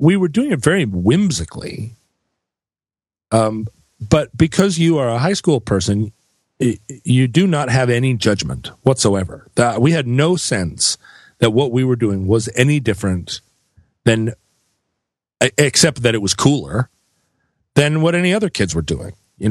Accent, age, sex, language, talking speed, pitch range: American, 40-59, male, English, 150 wpm, 100-150 Hz